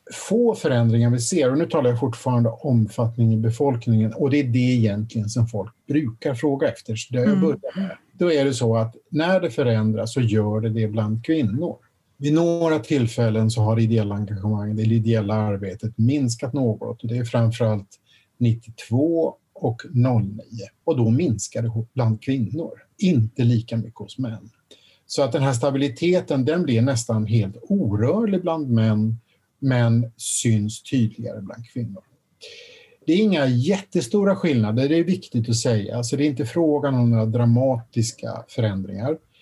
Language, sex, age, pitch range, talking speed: Swedish, male, 50-69, 115-150 Hz, 160 wpm